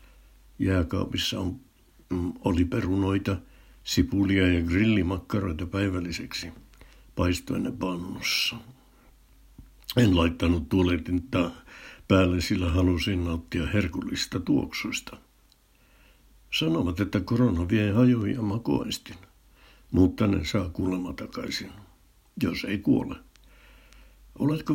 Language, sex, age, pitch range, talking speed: Finnish, male, 60-79, 90-120 Hz, 80 wpm